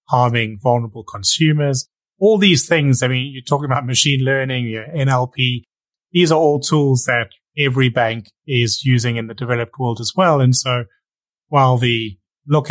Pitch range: 115-140 Hz